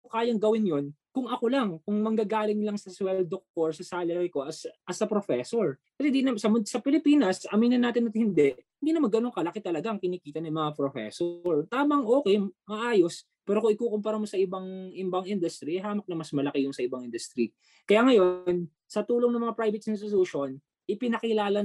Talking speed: 180 wpm